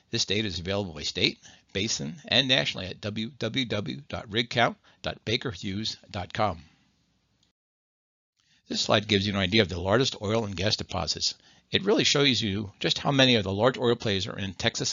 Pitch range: 95-115 Hz